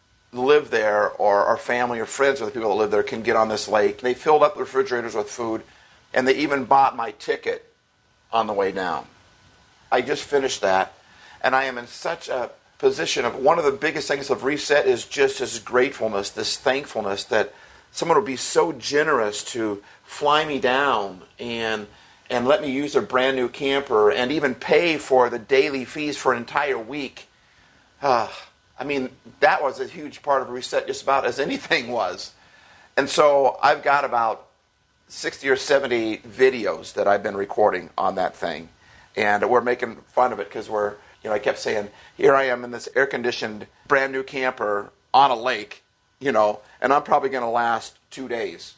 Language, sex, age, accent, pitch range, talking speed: English, male, 50-69, American, 110-140 Hz, 190 wpm